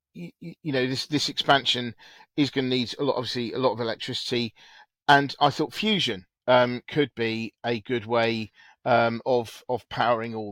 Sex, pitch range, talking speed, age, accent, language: male, 115-145 Hz, 175 wpm, 40-59, British, English